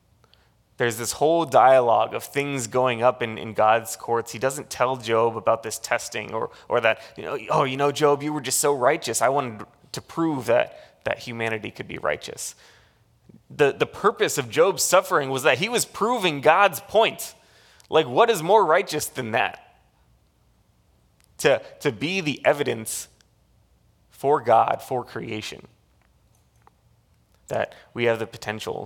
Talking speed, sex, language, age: 160 wpm, male, English, 20-39